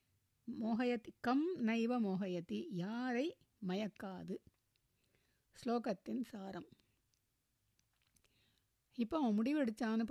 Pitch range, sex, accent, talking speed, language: 195-245 Hz, female, native, 65 wpm, Tamil